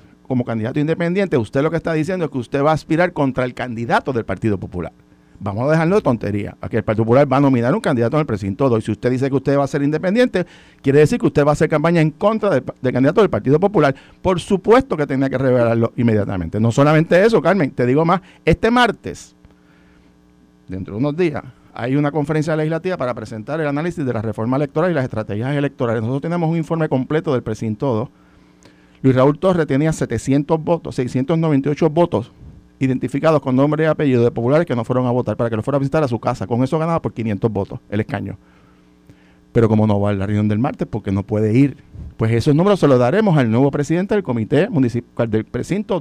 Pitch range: 110-160 Hz